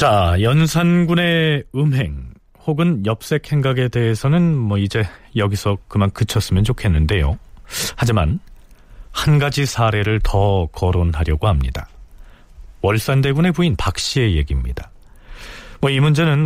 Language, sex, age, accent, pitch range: Korean, male, 40-59, native, 95-140 Hz